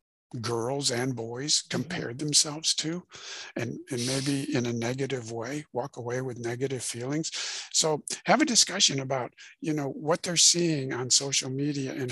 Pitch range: 120-150 Hz